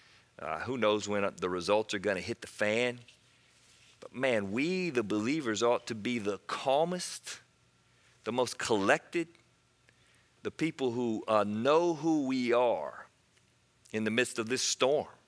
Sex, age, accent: male, 40-59, American